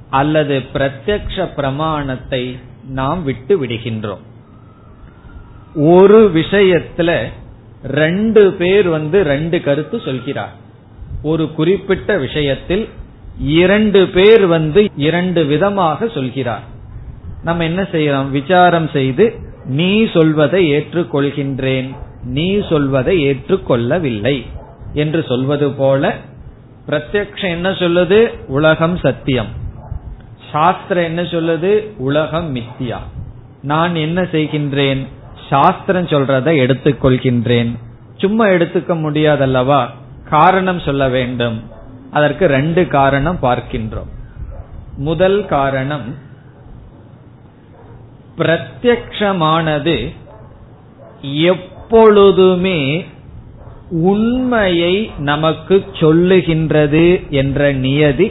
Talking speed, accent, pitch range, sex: 75 wpm, native, 125-175 Hz, male